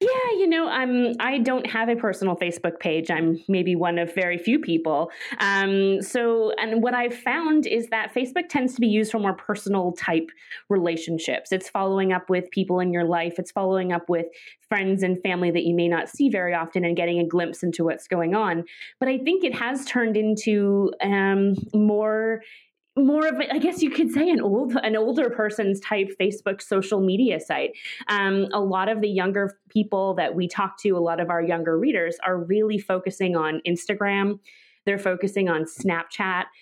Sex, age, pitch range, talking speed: female, 20-39, 175-220 Hz, 195 wpm